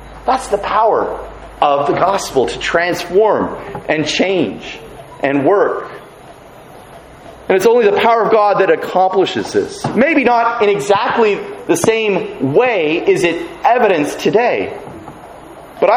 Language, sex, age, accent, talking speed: English, male, 40-59, American, 130 wpm